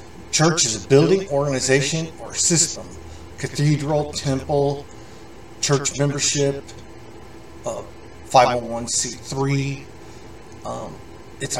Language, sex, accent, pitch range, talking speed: English, male, American, 85-135 Hz, 80 wpm